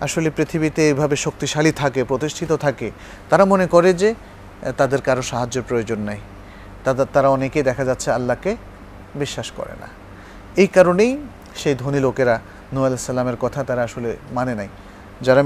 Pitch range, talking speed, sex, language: 100-150 Hz, 95 wpm, male, Bengali